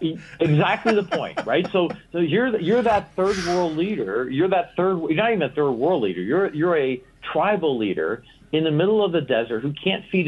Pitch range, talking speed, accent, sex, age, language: 120-170 Hz, 210 wpm, American, male, 50-69, English